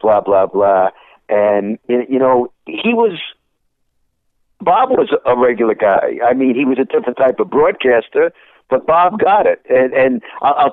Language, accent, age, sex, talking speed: English, American, 60-79, male, 160 wpm